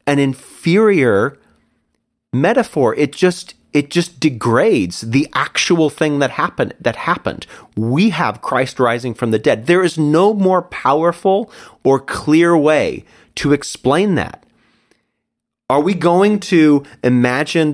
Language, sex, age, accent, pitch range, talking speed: English, male, 30-49, American, 120-160 Hz, 130 wpm